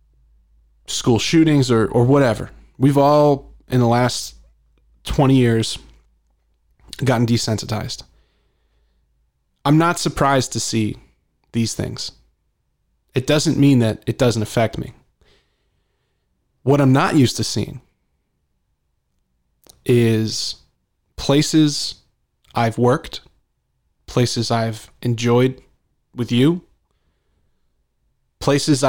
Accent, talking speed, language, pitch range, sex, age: American, 95 wpm, English, 110-135 Hz, male, 20-39